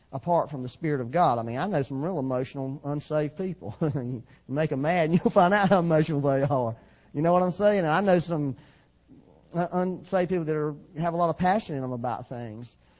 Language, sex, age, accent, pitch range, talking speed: English, male, 40-59, American, 120-165 Hz, 220 wpm